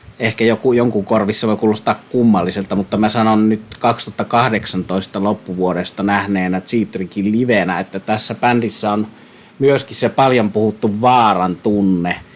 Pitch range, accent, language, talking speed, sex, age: 95-110 Hz, native, Finnish, 120 wpm, male, 30-49